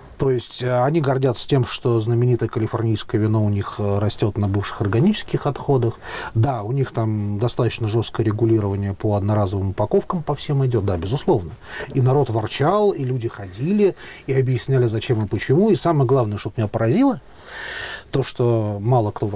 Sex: male